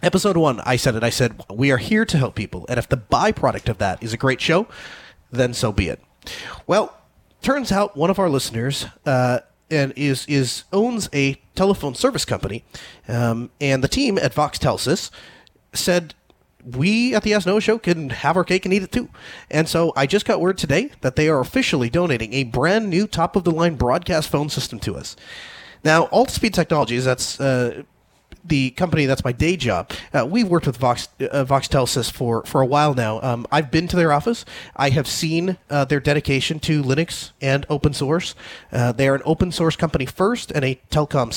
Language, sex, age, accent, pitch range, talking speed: English, male, 30-49, American, 125-175 Hz, 200 wpm